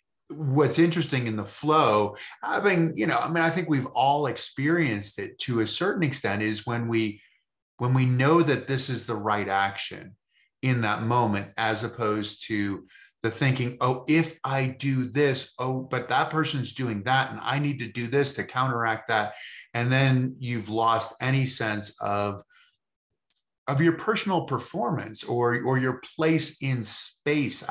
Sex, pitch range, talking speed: male, 115-160 Hz, 165 wpm